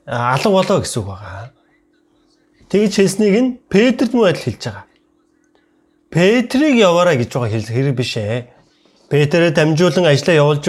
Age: 30-49